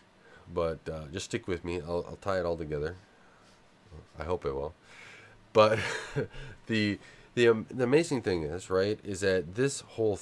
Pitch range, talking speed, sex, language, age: 85-105 Hz, 170 wpm, male, English, 30-49